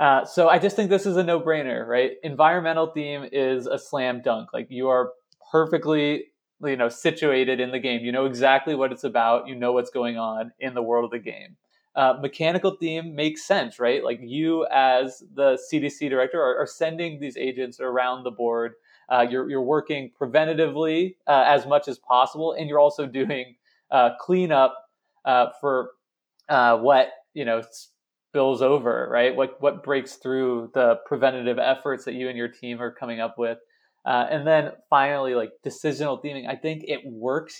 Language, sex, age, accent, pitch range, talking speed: English, male, 20-39, American, 125-150 Hz, 185 wpm